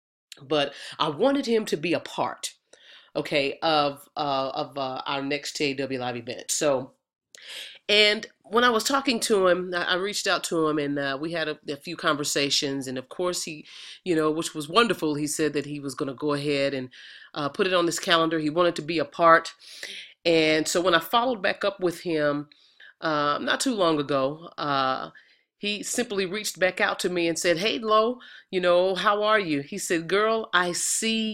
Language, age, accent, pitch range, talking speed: English, 40-59, American, 145-200 Hz, 205 wpm